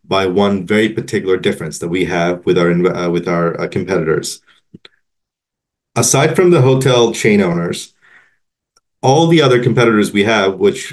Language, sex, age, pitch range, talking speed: English, male, 30-49, 95-125 Hz, 155 wpm